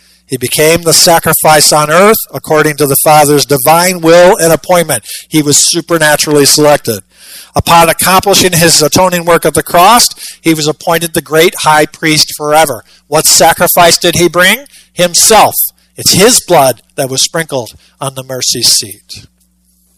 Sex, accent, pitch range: male, American, 135-170 Hz